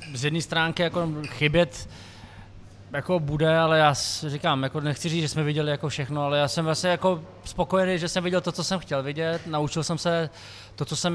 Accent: native